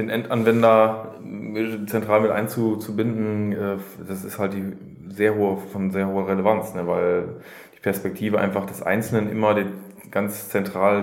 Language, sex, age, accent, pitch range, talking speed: German, male, 20-39, German, 95-110 Hz, 130 wpm